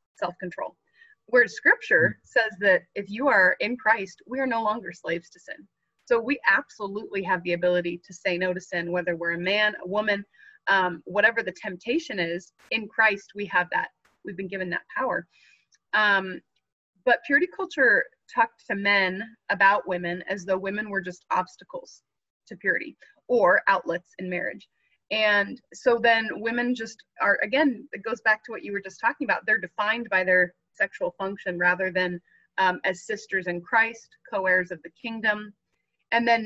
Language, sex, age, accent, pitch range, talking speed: English, female, 20-39, American, 185-235 Hz, 175 wpm